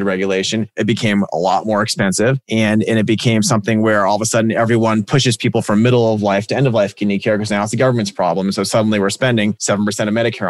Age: 30-49